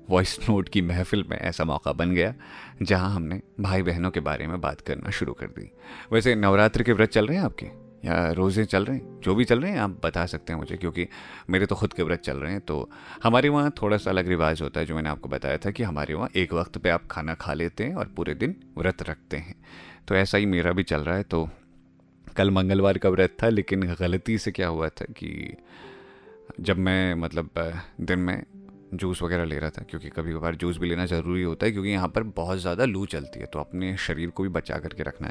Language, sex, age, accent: Hindi, male, 30-49, native